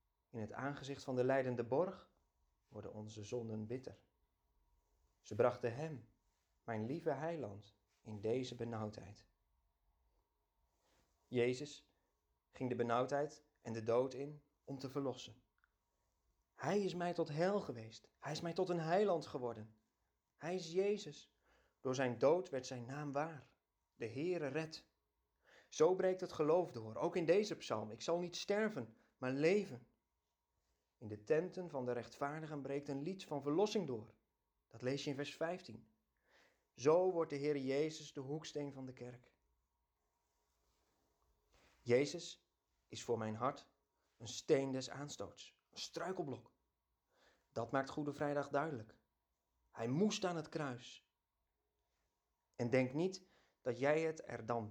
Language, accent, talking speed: Dutch, Dutch, 140 wpm